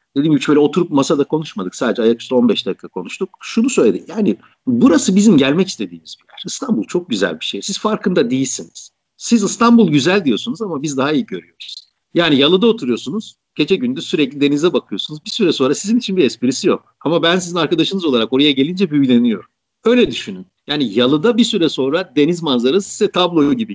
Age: 50-69